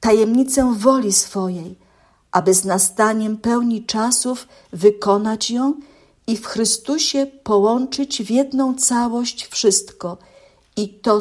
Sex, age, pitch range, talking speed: female, 50-69, 185-245 Hz, 105 wpm